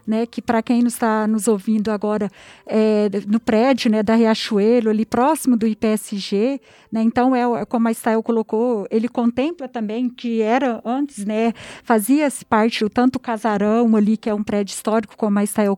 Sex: female